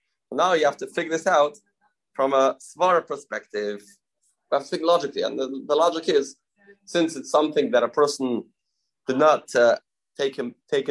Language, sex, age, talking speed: English, male, 30-49, 180 wpm